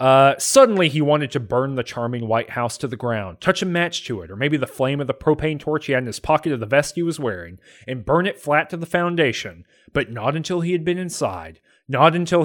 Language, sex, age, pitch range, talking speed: English, male, 30-49, 115-155 Hz, 255 wpm